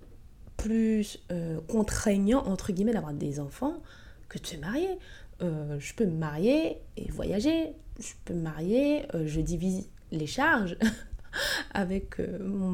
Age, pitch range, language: 20-39, 180-245 Hz, French